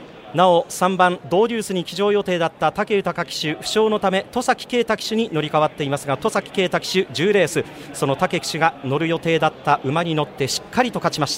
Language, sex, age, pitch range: Japanese, male, 40-59, 165-210 Hz